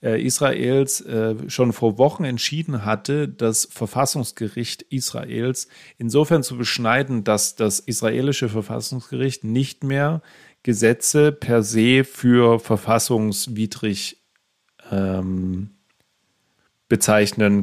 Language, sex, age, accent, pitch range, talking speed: German, male, 40-59, German, 105-130 Hz, 90 wpm